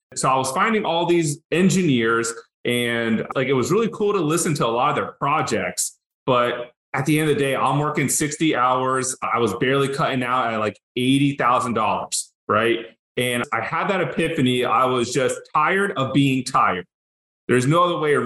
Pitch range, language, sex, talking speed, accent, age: 120-150 Hz, English, male, 195 wpm, American, 30-49